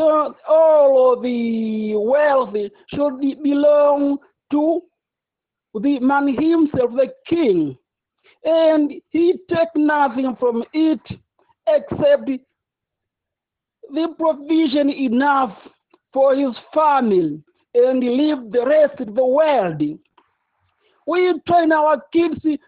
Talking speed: 100 wpm